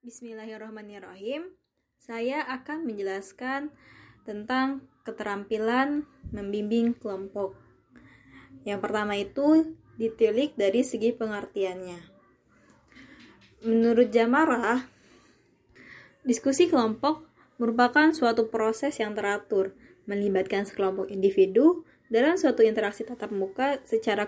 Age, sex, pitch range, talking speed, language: 20-39, female, 205-260 Hz, 80 wpm, Indonesian